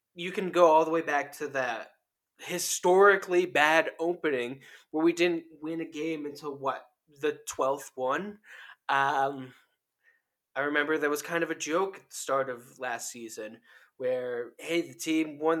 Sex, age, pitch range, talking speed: male, 20-39, 145-180 Hz, 165 wpm